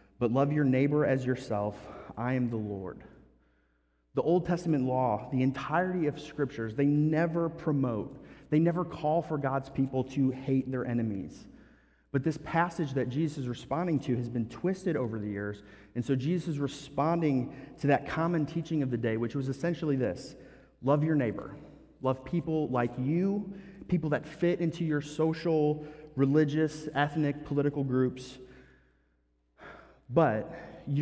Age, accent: 30-49, American